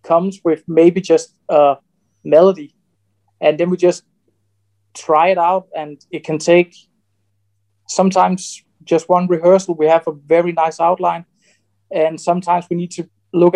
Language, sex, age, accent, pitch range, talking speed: English, male, 20-39, Danish, 145-175 Hz, 145 wpm